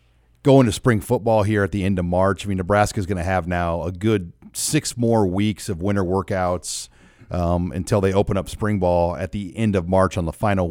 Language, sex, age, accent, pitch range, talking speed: English, male, 40-59, American, 95-115 Hz, 230 wpm